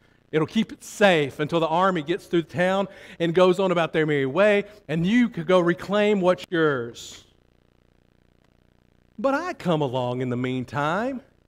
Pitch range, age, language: 120-195 Hz, 50-69, English